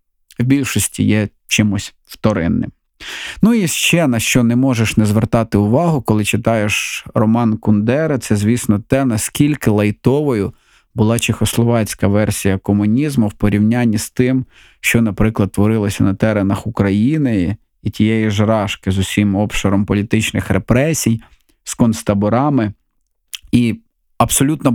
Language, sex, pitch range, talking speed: Ukrainian, male, 105-120 Hz, 125 wpm